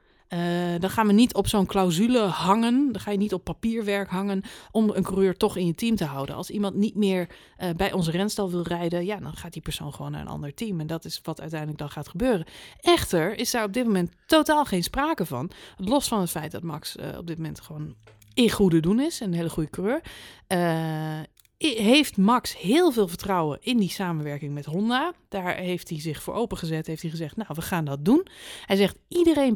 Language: Dutch